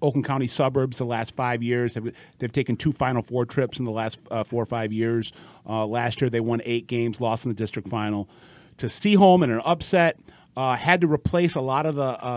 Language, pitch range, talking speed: English, 115-145 Hz, 235 wpm